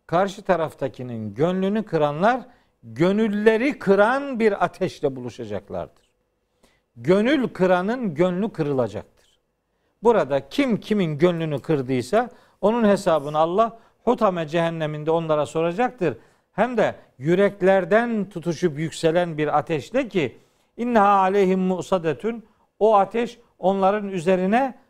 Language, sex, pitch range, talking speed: Turkish, male, 160-210 Hz, 95 wpm